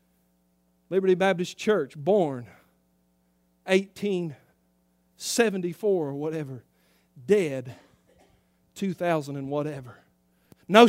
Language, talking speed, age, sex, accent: English, 65 wpm, 40-59, male, American